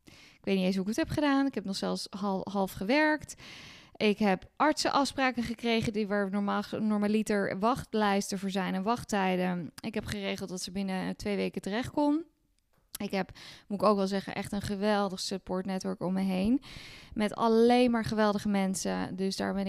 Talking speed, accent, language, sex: 185 wpm, Dutch, Dutch, female